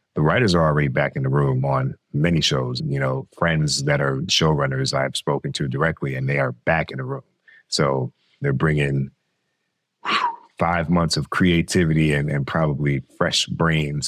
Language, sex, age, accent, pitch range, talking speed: English, male, 30-49, American, 70-85 Hz, 170 wpm